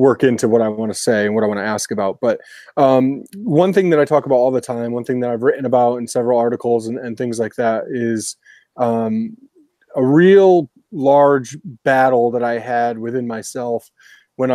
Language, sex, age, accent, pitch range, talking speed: English, male, 30-49, American, 120-140 Hz, 200 wpm